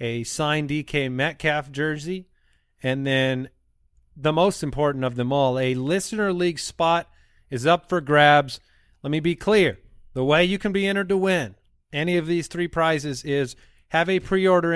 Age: 30-49